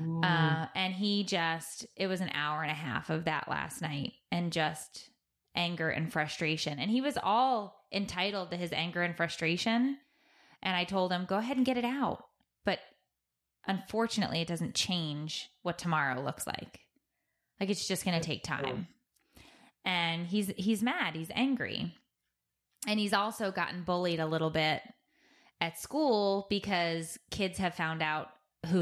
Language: English